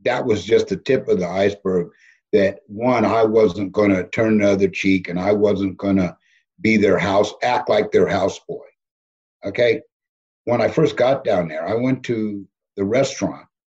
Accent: American